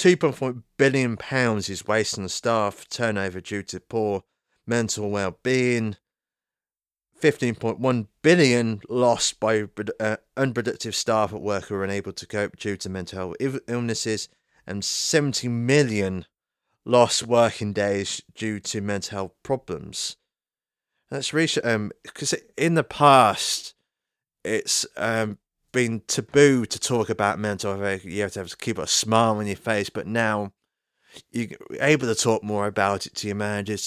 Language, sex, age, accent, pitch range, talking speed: English, male, 30-49, British, 100-115 Hz, 150 wpm